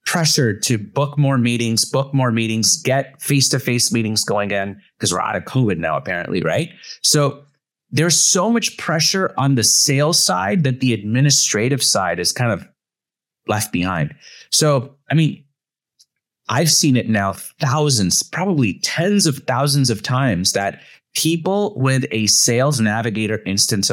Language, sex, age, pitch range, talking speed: English, male, 30-49, 115-150 Hz, 150 wpm